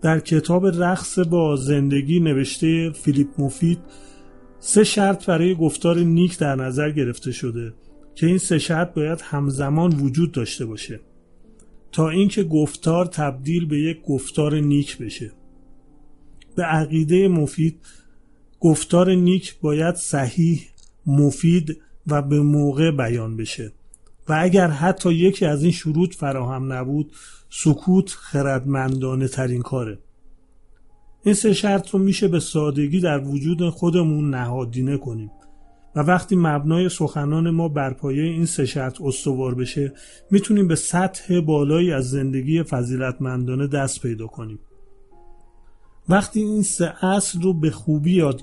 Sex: male